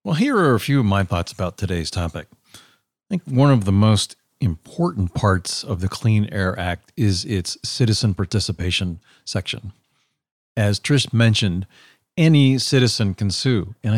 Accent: American